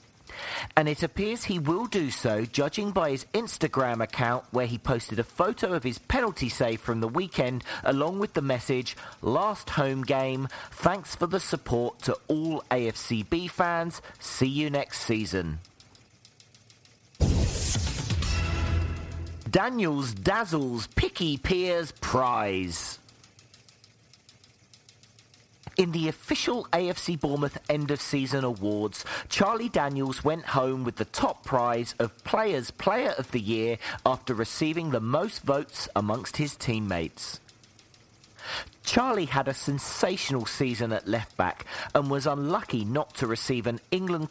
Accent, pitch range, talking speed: British, 115-145 Hz, 125 wpm